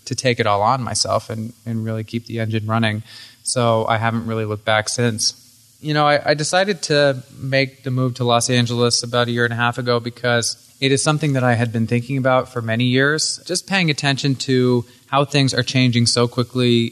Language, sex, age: English, male, 20-39